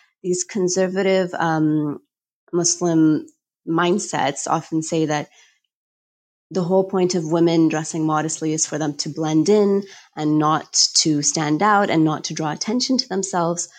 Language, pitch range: English, 155-180 Hz